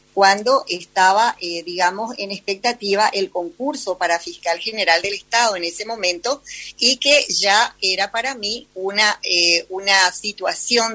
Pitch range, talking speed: 185-225 Hz, 140 wpm